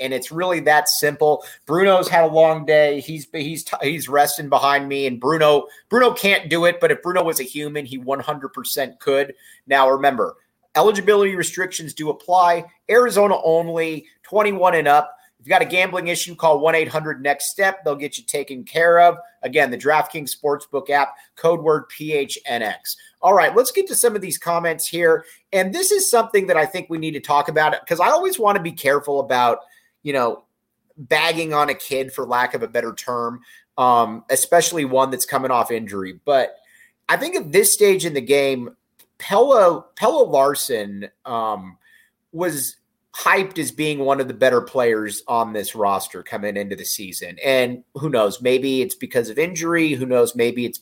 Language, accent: English, American